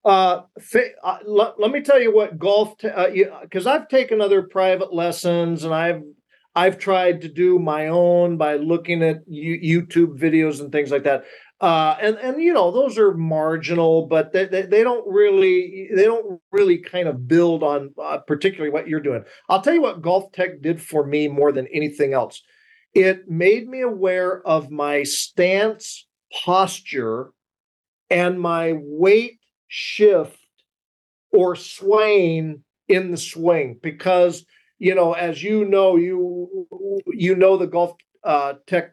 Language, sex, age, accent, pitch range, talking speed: English, male, 40-59, American, 165-210 Hz, 155 wpm